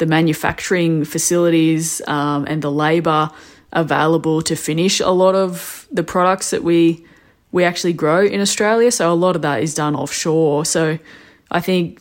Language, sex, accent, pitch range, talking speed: English, female, Australian, 150-175 Hz, 165 wpm